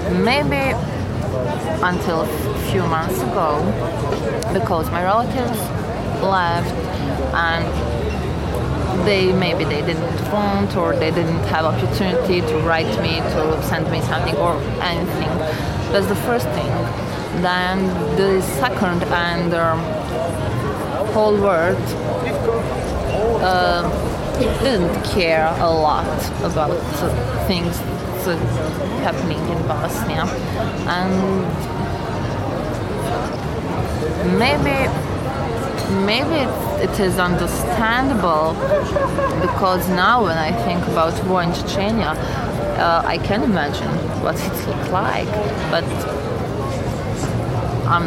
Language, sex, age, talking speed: Finnish, female, 20-39, 95 wpm